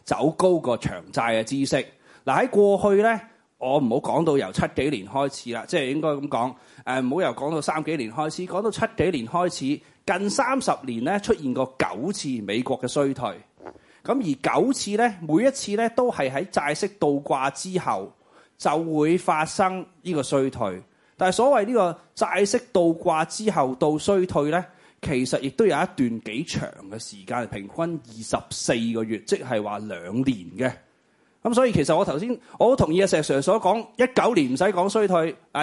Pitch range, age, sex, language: 135-205 Hz, 30-49, male, Chinese